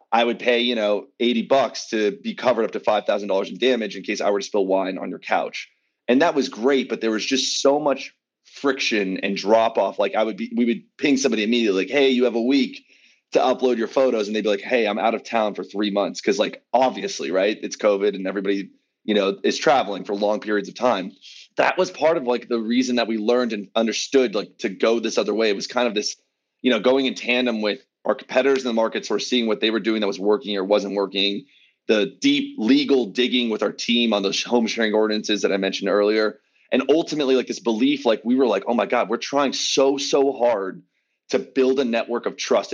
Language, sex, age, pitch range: English, male, 30-49, 105-130 Hz